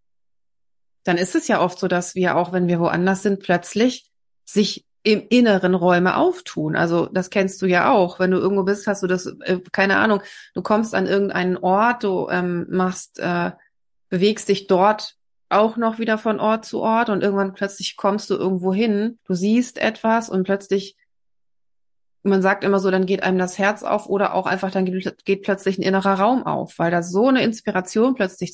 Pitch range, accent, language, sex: 180-210 Hz, German, German, female